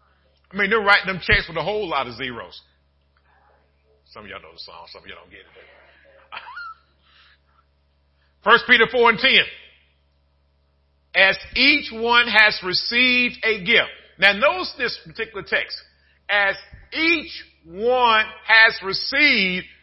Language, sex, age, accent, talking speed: English, male, 50-69, American, 140 wpm